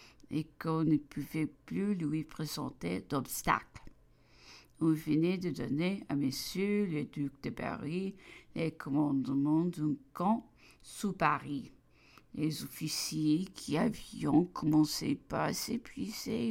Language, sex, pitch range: English, female, 150-185 Hz